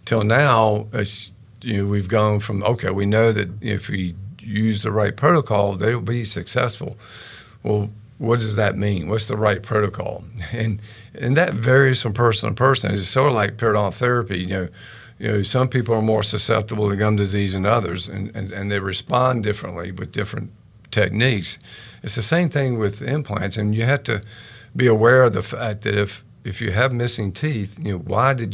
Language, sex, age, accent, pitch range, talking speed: English, male, 50-69, American, 100-115 Hz, 195 wpm